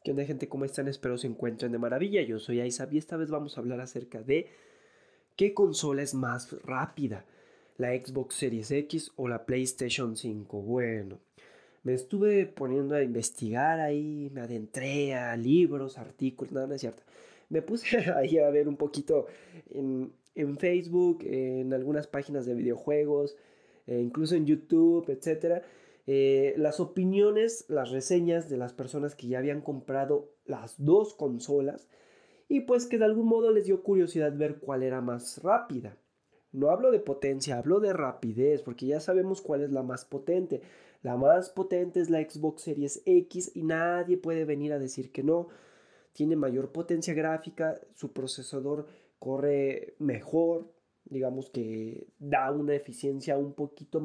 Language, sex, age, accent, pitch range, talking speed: Spanish, male, 20-39, Mexican, 130-170 Hz, 160 wpm